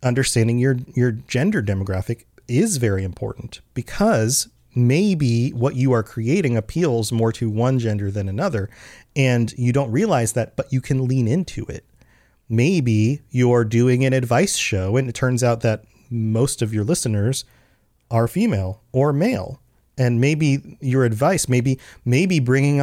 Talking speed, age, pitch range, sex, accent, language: 150 wpm, 30-49, 115-135 Hz, male, American, English